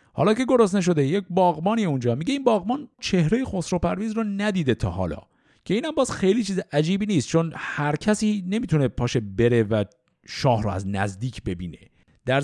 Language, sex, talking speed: Persian, male, 180 wpm